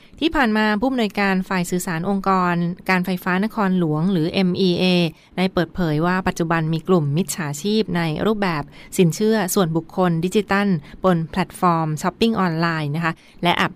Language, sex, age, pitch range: Thai, female, 20-39, 170-195 Hz